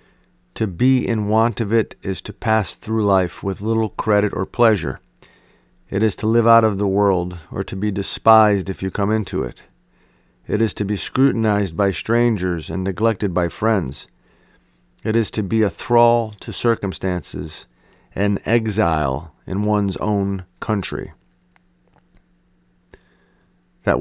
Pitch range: 85-110 Hz